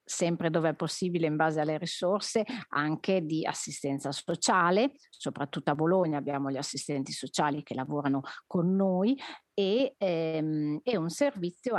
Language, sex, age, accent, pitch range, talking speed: Italian, female, 40-59, native, 155-210 Hz, 140 wpm